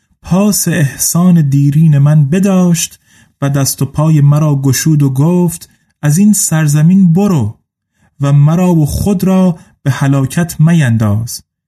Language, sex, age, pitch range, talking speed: Persian, male, 30-49, 140-170 Hz, 130 wpm